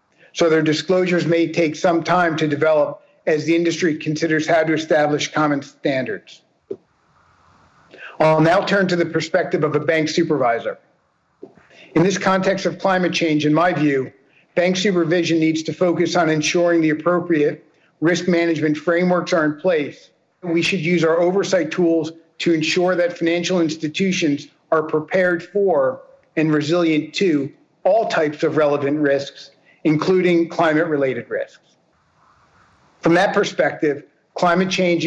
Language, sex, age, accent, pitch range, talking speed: English, male, 50-69, American, 155-175 Hz, 140 wpm